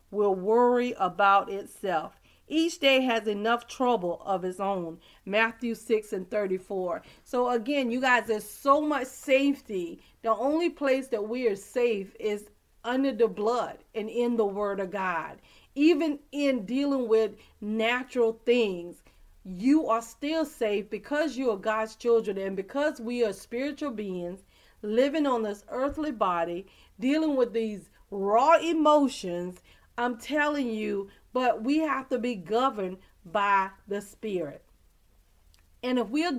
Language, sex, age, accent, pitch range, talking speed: English, female, 40-59, American, 205-275 Hz, 145 wpm